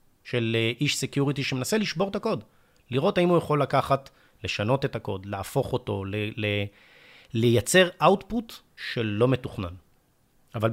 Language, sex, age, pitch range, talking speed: Hebrew, male, 30-49, 115-150 Hz, 140 wpm